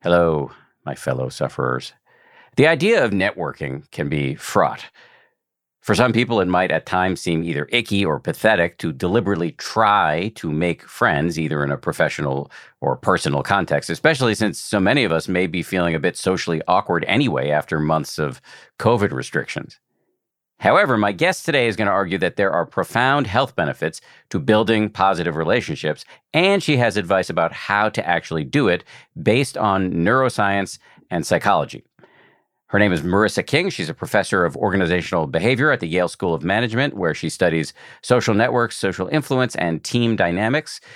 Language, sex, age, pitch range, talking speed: English, male, 50-69, 80-115 Hz, 165 wpm